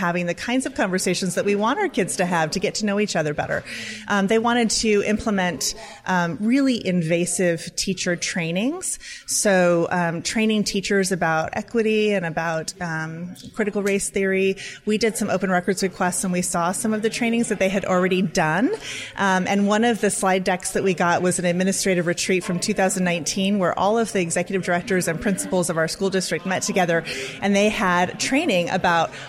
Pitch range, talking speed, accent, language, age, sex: 175-210 Hz, 195 wpm, American, English, 30-49, female